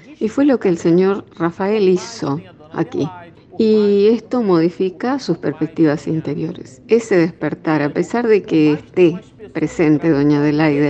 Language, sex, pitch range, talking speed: Spanish, female, 155-195 Hz, 140 wpm